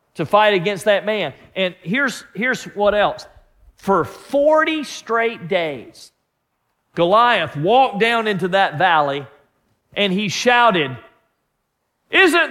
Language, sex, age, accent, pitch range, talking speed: English, male, 50-69, American, 190-265 Hz, 115 wpm